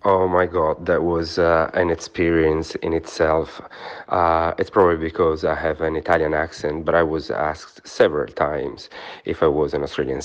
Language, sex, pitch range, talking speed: English, male, 80-100 Hz, 175 wpm